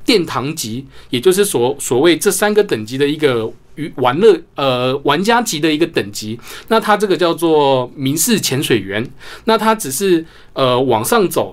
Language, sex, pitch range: Chinese, male, 125-170 Hz